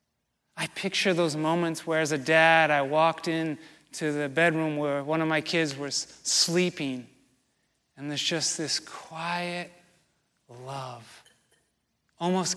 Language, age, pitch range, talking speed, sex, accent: English, 30-49, 150-185 Hz, 135 wpm, male, American